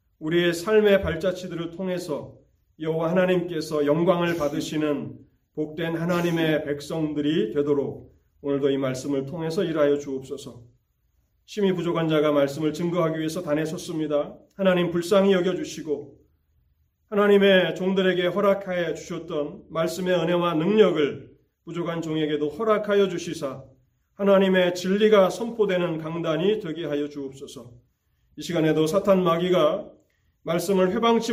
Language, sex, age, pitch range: Korean, male, 30-49, 135-180 Hz